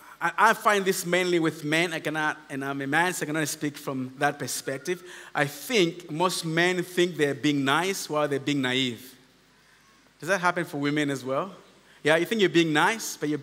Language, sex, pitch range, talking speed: English, male, 135-175 Hz, 205 wpm